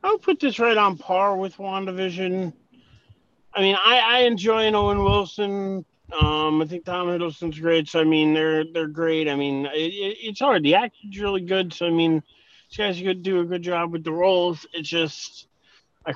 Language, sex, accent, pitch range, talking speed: English, male, American, 140-175 Hz, 195 wpm